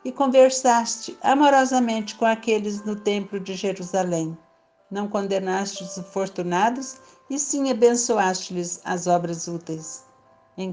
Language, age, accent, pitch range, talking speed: Portuguese, 60-79, Brazilian, 185-235 Hz, 110 wpm